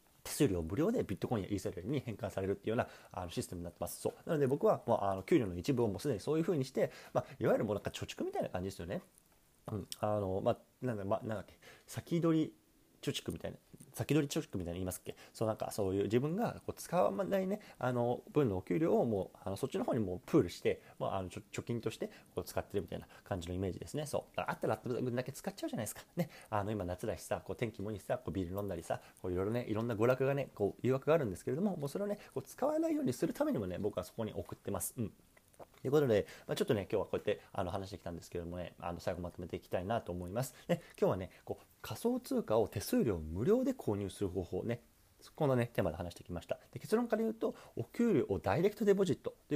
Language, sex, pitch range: Japanese, male, 95-145 Hz